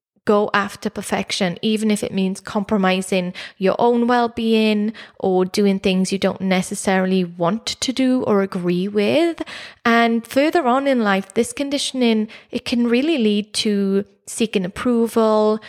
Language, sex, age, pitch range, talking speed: English, female, 20-39, 195-230 Hz, 140 wpm